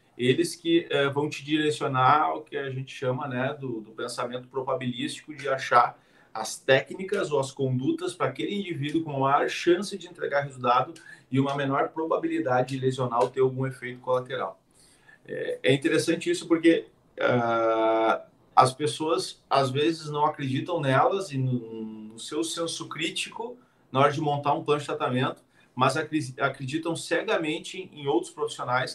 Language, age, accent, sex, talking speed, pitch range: Portuguese, 40-59, Brazilian, male, 160 wpm, 130-165 Hz